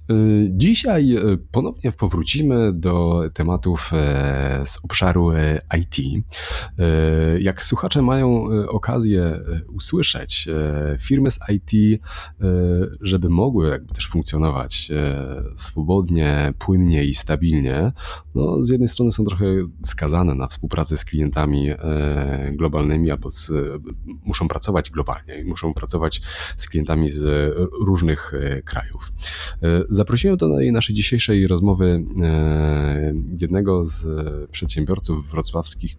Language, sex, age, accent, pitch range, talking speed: Polish, male, 30-49, native, 75-95 Hz, 100 wpm